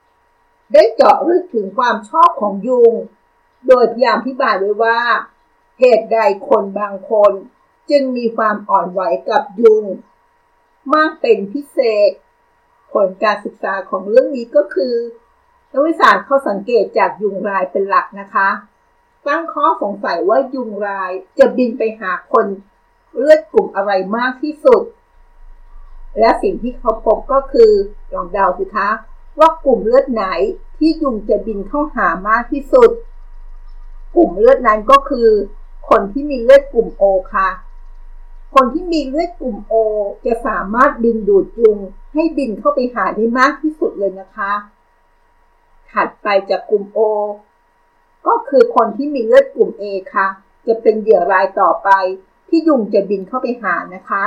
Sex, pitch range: female, 205-295 Hz